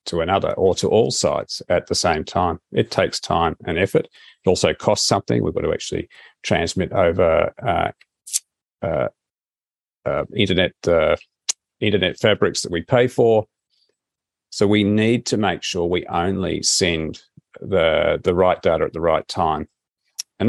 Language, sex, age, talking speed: English, male, 40-59, 160 wpm